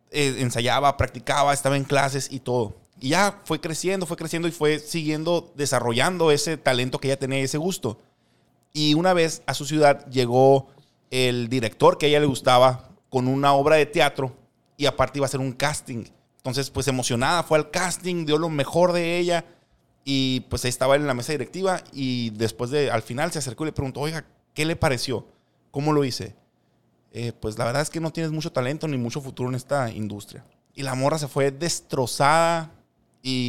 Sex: male